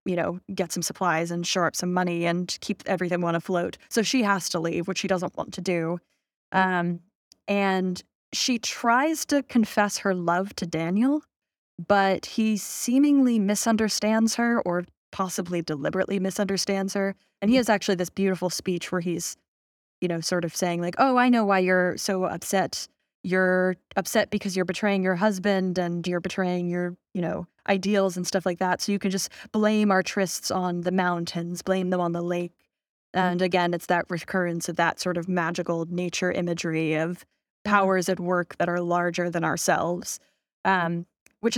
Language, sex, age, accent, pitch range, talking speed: English, female, 20-39, American, 175-200 Hz, 180 wpm